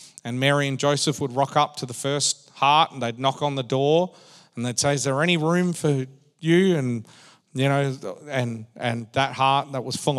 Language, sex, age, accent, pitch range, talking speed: English, male, 40-59, Australian, 135-165 Hz, 210 wpm